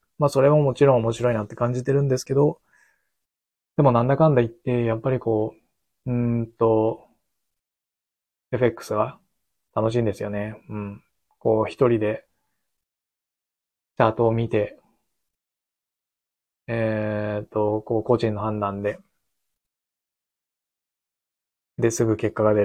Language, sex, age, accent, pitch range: Japanese, male, 20-39, native, 105-125 Hz